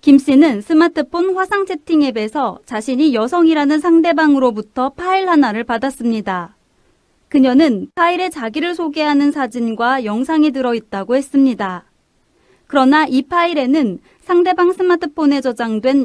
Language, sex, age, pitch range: Korean, female, 30-49, 245-315 Hz